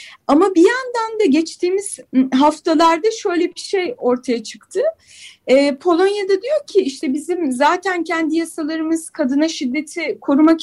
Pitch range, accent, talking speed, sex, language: 270-370 Hz, native, 130 wpm, female, Turkish